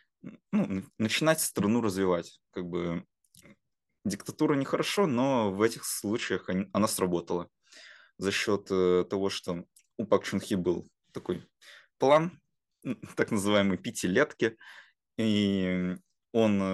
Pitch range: 90-105 Hz